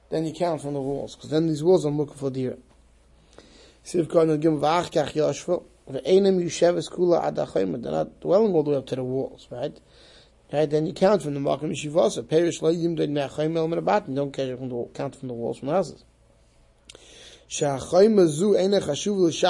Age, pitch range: 30-49, 145-180 Hz